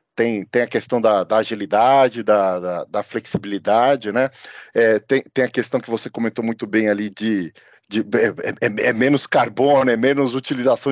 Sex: male